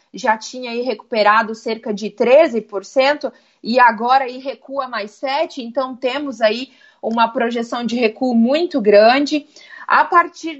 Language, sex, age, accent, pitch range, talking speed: Portuguese, female, 30-49, Brazilian, 230-275 Hz, 135 wpm